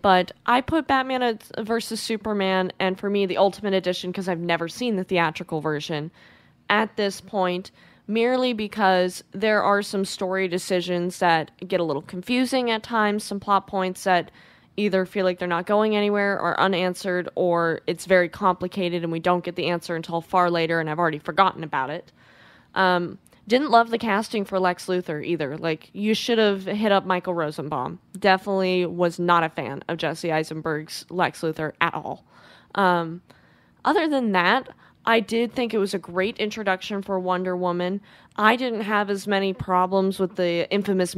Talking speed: 175 wpm